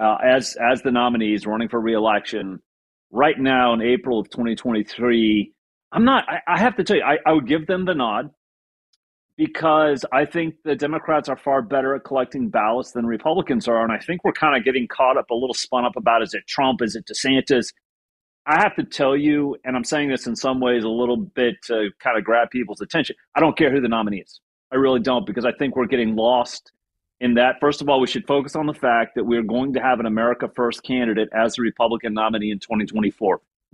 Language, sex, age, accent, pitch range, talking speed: English, male, 40-59, American, 110-140 Hz, 220 wpm